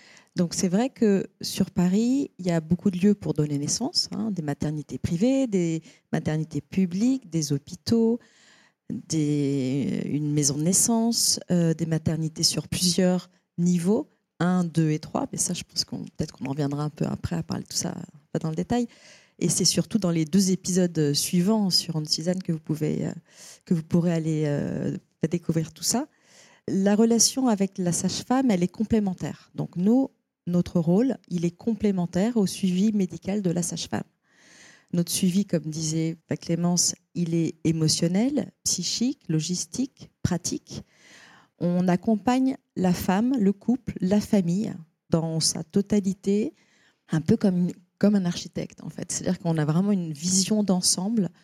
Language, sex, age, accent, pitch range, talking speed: French, female, 40-59, French, 165-205 Hz, 160 wpm